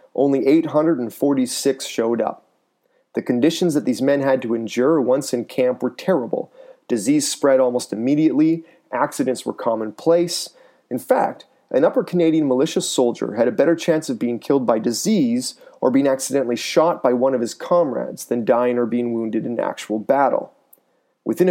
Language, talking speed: English, 160 wpm